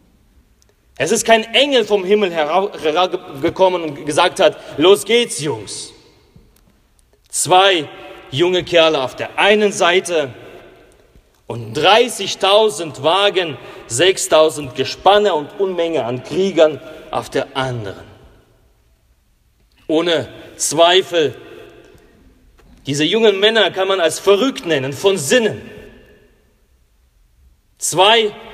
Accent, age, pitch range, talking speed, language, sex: German, 40-59, 160-215 Hz, 95 wpm, German, male